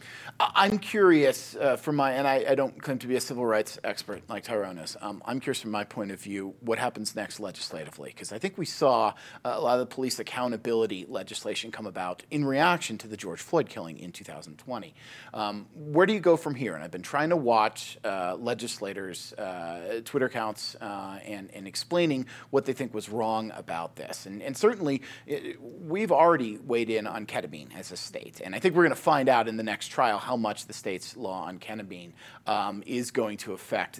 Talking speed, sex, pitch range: 210 wpm, male, 110-155 Hz